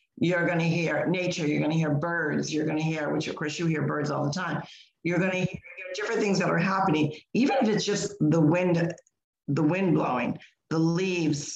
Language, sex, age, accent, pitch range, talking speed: English, female, 50-69, American, 155-185 Hz, 225 wpm